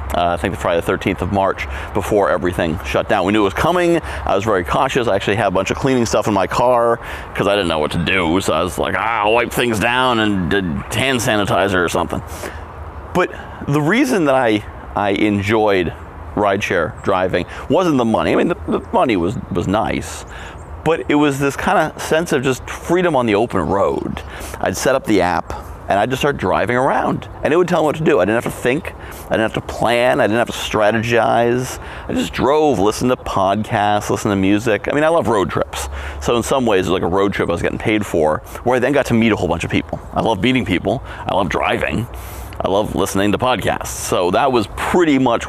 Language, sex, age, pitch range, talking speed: English, male, 30-49, 90-120 Hz, 235 wpm